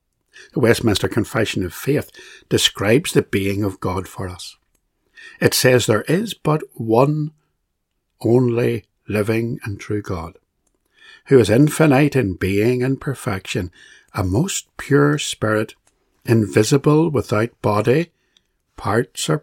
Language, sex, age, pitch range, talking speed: English, male, 60-79, 105-150 Hz, 120 wpm